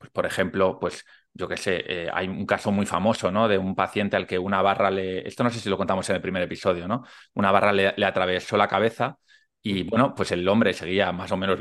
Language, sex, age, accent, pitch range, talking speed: Spanish, male, 20-39, Spanish, 95-115 Hz, 255 wpm